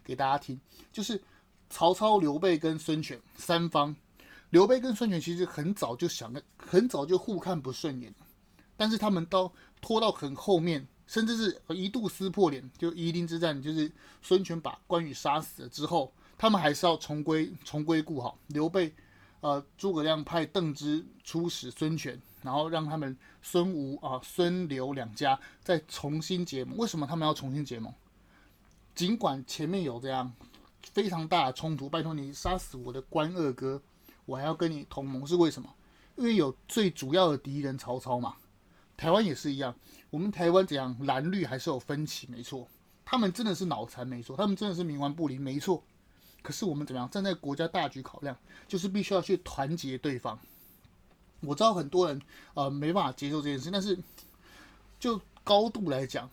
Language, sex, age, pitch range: Chinese, male, 30-49, 135-180 Hz